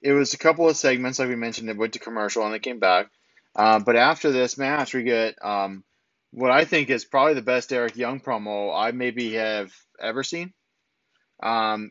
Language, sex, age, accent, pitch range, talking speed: English, male, 20-39, American, 110-135 Hz, 205 wpm